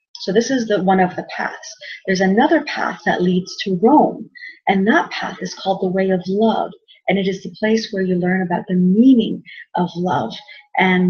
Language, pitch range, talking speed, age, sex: English, 180-225 Hz, 205 wpm, 30-49, female